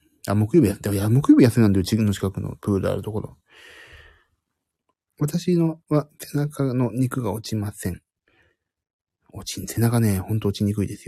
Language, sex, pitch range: Japanese, male, 100-135 Hz